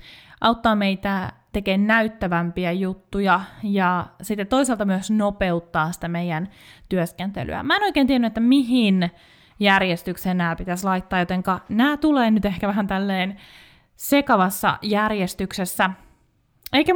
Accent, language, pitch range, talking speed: native, Finnish, 185-240 Hz, 115 wpm